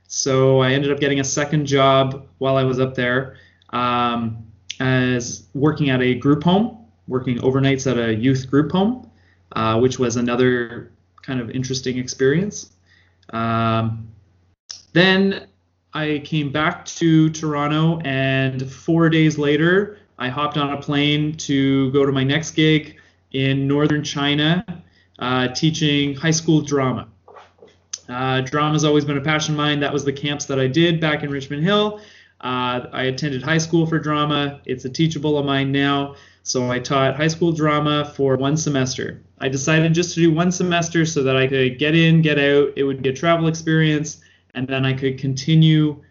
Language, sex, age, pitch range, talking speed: English, male, 20-39, 125-155 Hz, 175 wpm